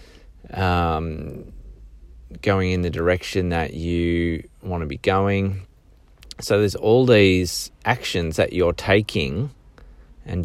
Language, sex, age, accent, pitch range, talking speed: English, male, 20-39, Australian, 80-95 Hz, 115 wpm